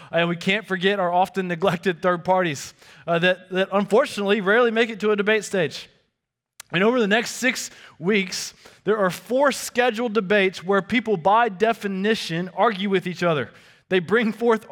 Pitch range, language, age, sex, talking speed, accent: 165-210 Hz, English, 20-39, male, 170 wpm, American